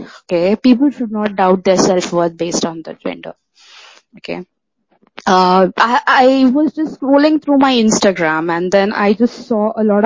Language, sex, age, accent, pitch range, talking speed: English, female, 20-39, Indian, 185-245 Hz, 165 wpm